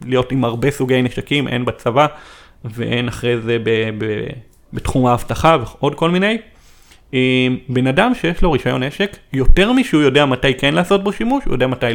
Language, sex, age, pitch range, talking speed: Hebrew, male, 30-49, 120-150 Hz, 160 wpm